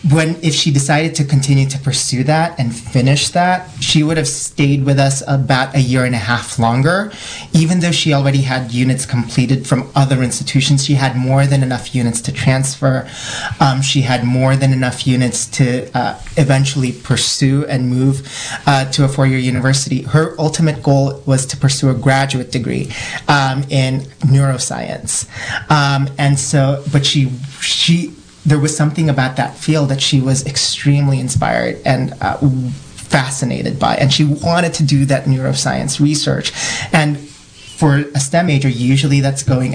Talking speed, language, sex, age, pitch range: 170 wpm, English, male, 30-49, 130-150 Hz